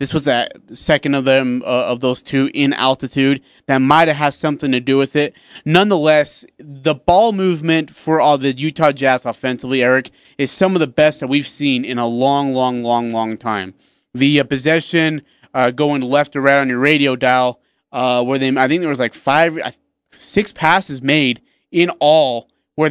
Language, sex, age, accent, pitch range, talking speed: English, male, 30-49, American, 130-155 Hz, 195 wpm